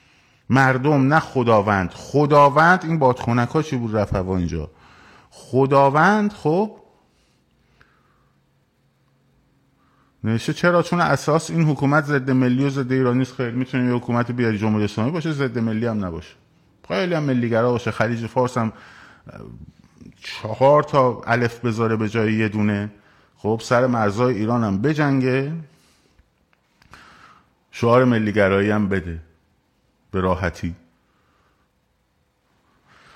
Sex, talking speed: male, 110 wpm